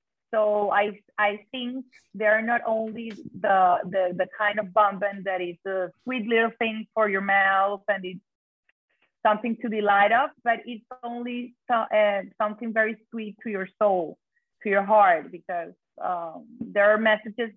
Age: 30-49